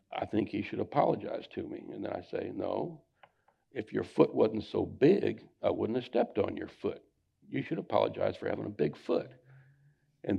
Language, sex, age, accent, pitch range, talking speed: English, male, 60-79, American, 105-135 Hz, 195 wpm